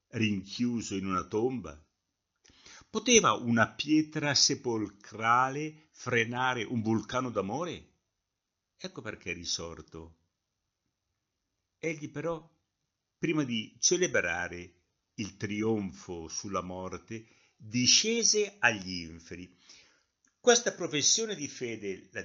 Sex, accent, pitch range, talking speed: male, native, 90-140 Hz, 90 wpm